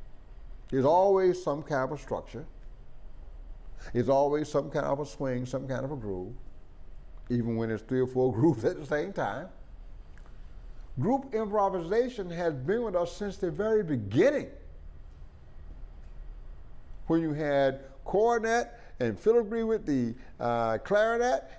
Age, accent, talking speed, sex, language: 50-69, American, 140 wpm, male, English